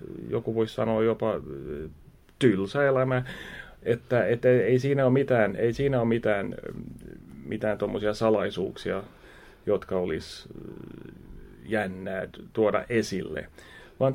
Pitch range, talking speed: 110-135 Hz, 100 wpm